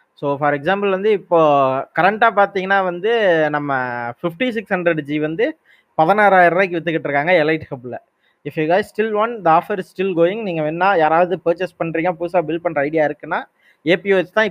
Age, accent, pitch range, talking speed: 20-39, native, 150-185 Hz, 175 wpm